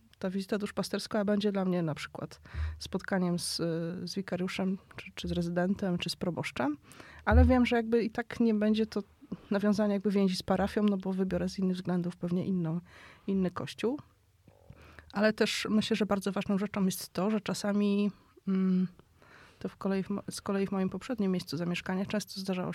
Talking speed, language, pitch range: 175 wpm, Polish, 180-205 Hz